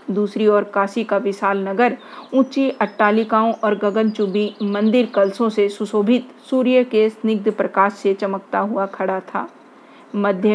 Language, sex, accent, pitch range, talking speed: Hindi, female, native, 200-230 Hz, 135 wpm